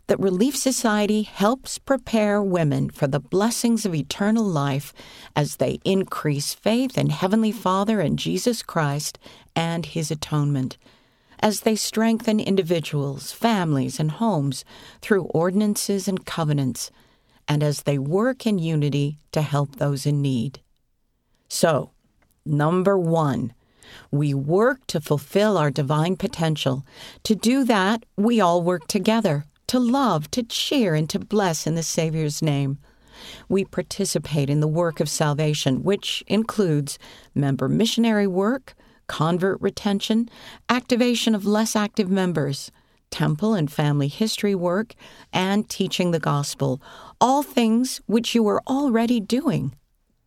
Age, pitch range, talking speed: 50-69, 150-215 Hz, 130 wpm